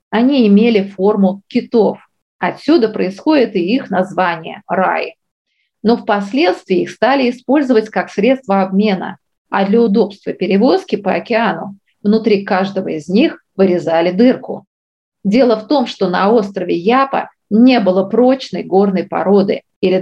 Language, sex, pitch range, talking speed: Russian, female, 190-235 Hz, 130 wpm